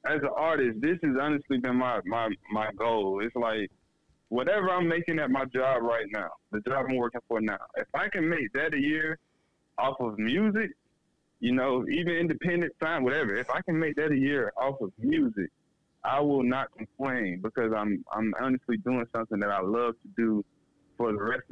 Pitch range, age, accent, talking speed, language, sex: 110-130 Hz, 20-39, American, 200 wpm, English, male